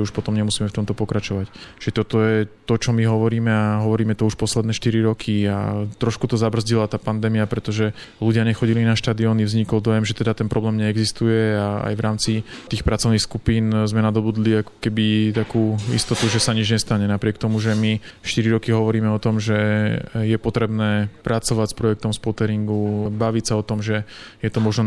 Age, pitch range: 20-39, 105-115 Hz